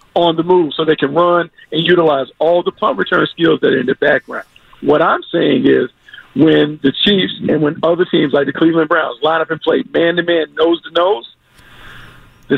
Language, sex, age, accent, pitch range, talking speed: English, male, 50-69, American, 155-195 Hz, 195 wpm